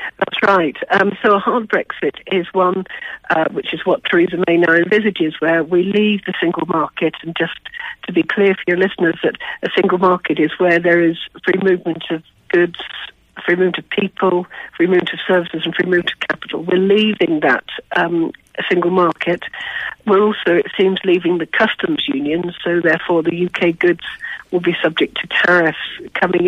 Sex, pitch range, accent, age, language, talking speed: female, 170-195 Hz, British, 60-79, English, 185 wpm